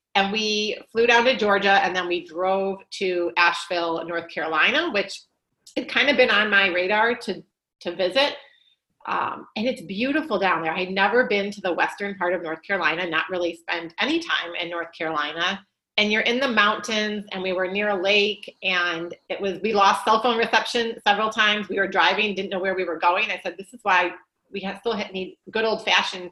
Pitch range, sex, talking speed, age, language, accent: 175-210 Hz, female, 205 wpm, 30-49, English, American